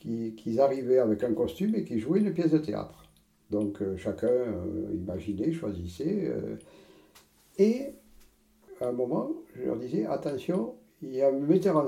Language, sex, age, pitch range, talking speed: French, male, 60-79, 105-170 Hz, 170 wpm